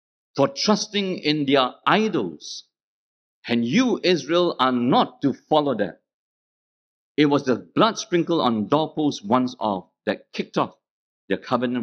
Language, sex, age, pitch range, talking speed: English, male, 50-69, 95-160 Hz, 135 wpm